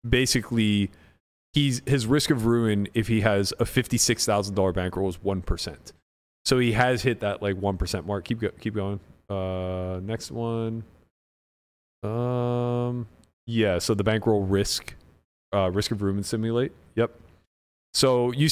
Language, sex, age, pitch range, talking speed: English, male, 30-49, 95-120 Hz, 150 wpm